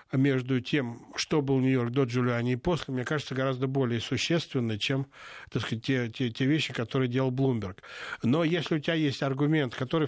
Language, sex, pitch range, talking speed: Russian, male, 125-145 Hz, 185 wpm